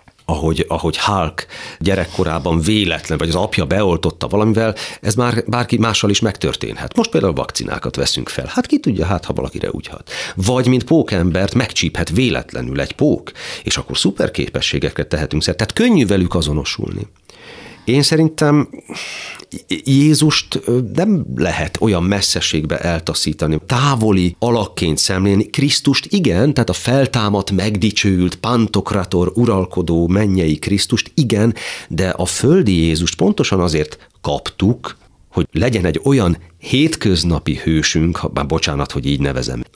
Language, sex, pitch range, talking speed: Hungarian, male, 80-115 Hz, 130 wpm